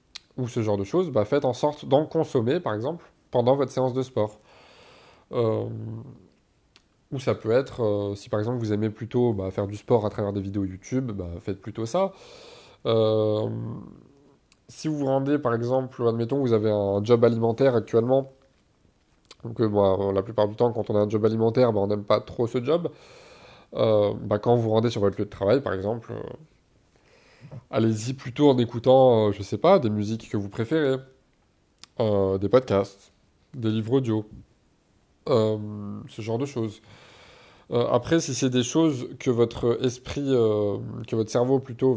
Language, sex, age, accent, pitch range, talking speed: French, male, 20-39, French, 105-130 Hz, 185 wpm